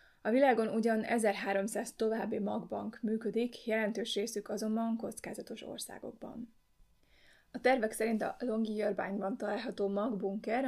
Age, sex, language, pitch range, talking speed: 20-39, female, Hungarian, 195-225 Hz, 110 wpm